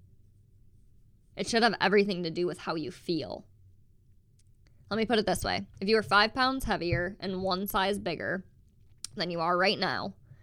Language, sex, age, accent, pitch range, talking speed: English, female, 20-39, American, 165-225 Hz, 180 wpm